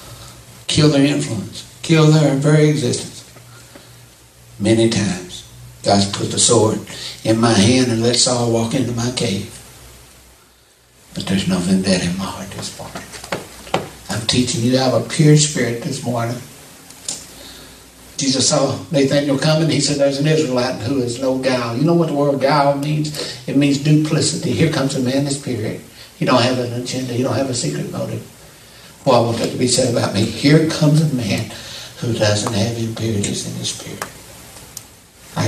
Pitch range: 100-140 Hz